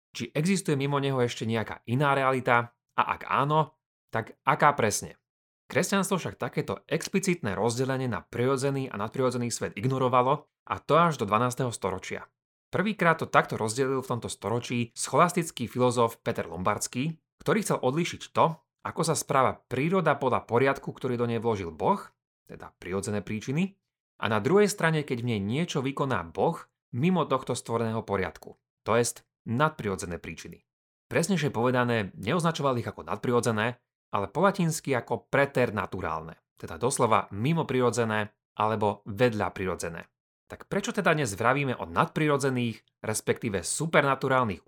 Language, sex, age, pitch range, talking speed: Slovak, male, 30-49, 110-145 Hz, 140 wpm